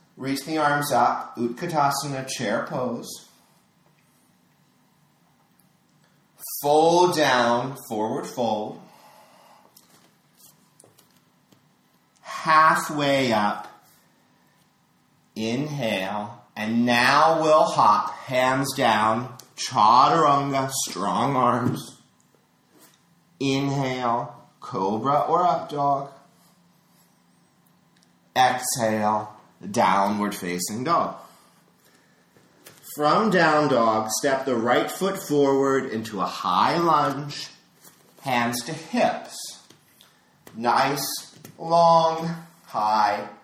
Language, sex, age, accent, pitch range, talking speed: English, male, 40-59, American, 120-160 Hz, 70 wpm